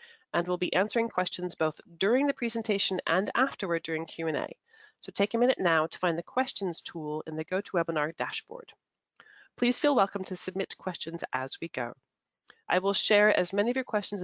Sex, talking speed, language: female, 185 wpm, English